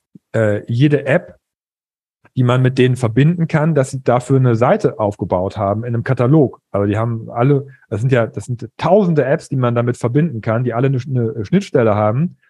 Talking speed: 190 wpm